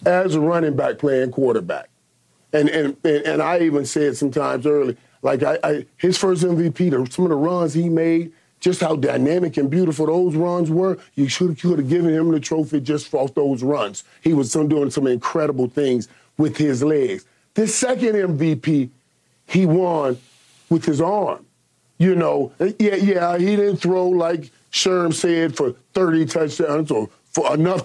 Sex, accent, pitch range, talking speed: male, American, 150-195 Hz, 170 wpm